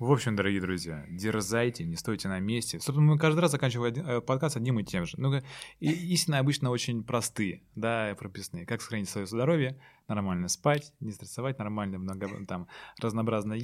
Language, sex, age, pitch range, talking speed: Russian, male, 20-39, 95-115 Hz, 165 wpm